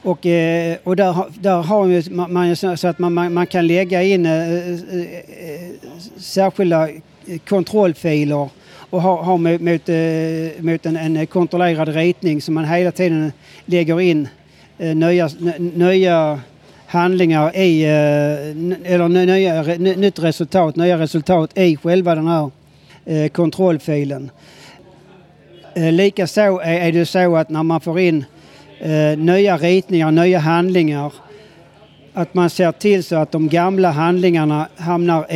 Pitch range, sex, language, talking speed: 160-180 Hz, male, Swedish, 120 wpm